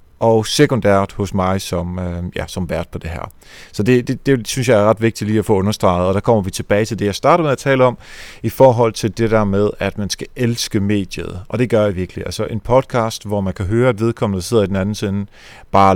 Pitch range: 100-125 Hz